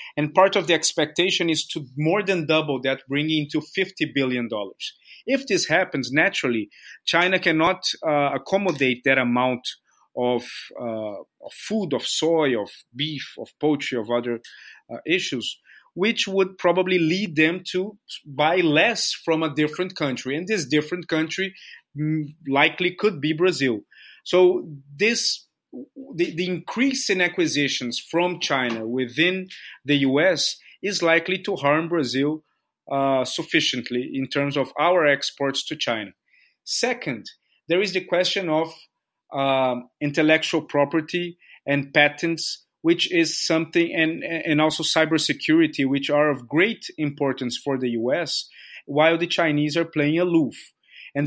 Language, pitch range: English, 140-180 Hz